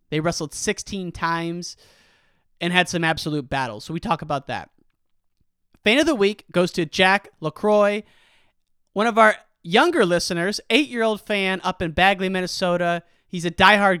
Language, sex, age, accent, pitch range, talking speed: English, male, 30-49, American, 150-195 Hz, 155 wpm